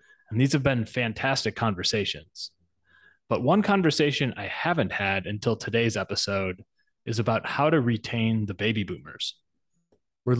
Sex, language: male, English